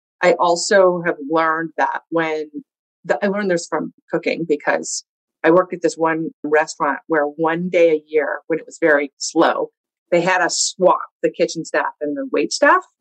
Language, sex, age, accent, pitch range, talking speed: English, female, 30-49, American, 155-195 Hz, 180 wpm